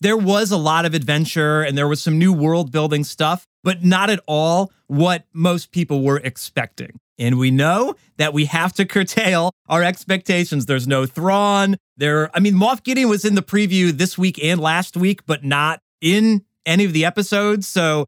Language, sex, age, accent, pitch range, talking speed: English, male, 30-49, American, 150-200 Hz, 195 wpm